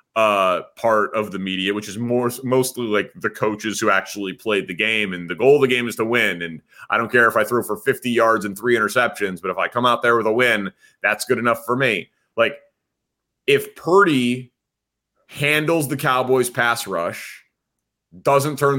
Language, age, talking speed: English, 30-49, 200 wpm